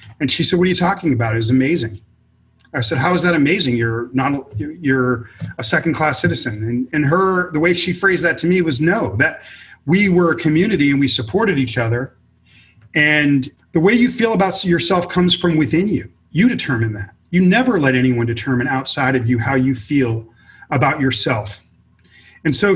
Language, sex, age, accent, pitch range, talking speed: English, male, 40-59, American, 125-170 Hz, 195 wpm